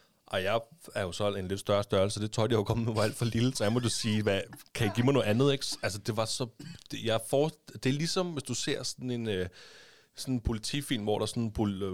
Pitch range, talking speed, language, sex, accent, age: 95-115 Hz, 280 wpm, Danish, male, native, 30-49